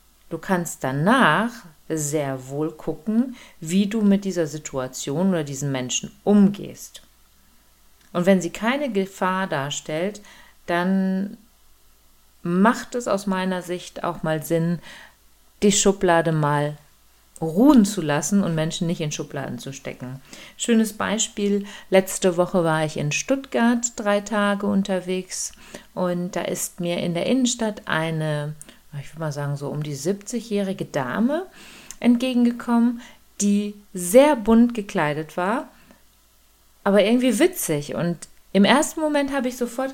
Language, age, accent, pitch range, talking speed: German, 40-59, German, 165-230 Hz, 130 wpm